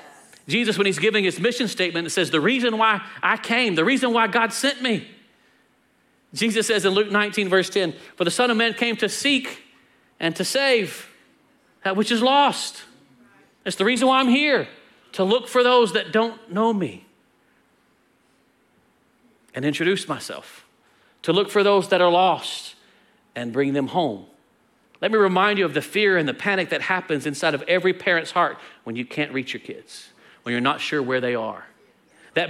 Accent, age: American, 40-59